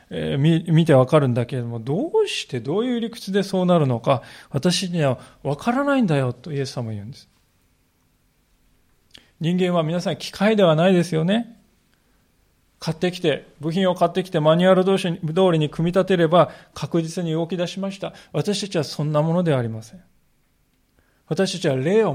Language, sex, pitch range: Japanese, male, 140-195 Hz